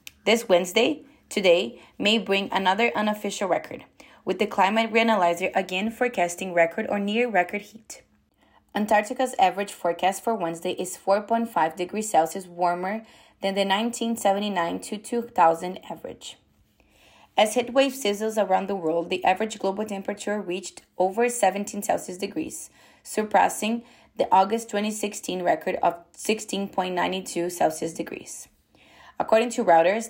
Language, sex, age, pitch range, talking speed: English, female, 20-39, 180-215 Hz, 120 wpm